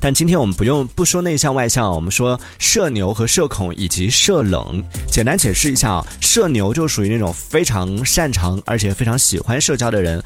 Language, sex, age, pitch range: Chinese, male, 30-49, 95-135 Hz